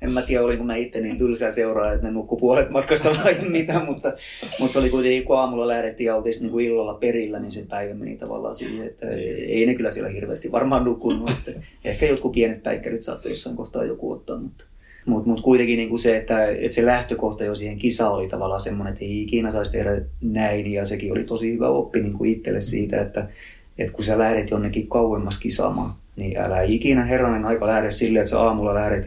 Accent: native